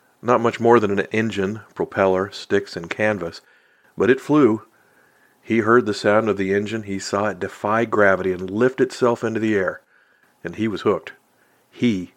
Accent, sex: American, male